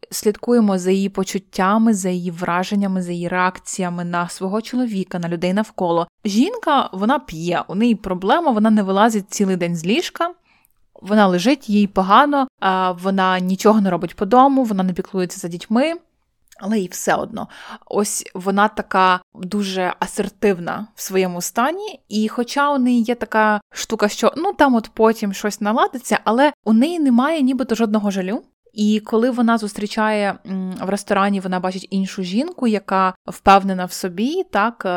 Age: 20-39